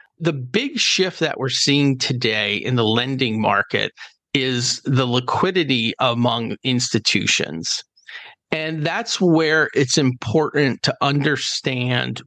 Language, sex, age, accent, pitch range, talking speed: English, male, 40-59, American, 125-150 Hz, 110 wpm